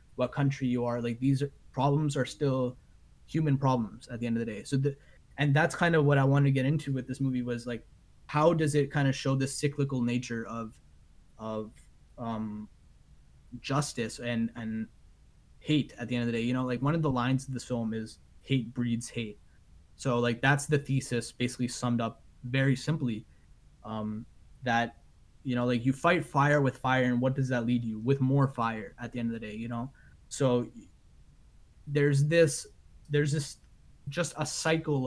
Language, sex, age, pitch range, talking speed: English, male, 20-39, 120-145 Hz, 200 wpm